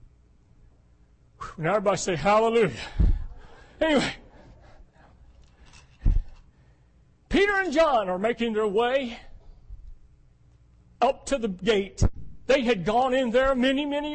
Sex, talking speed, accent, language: male, 100 wpm, American, English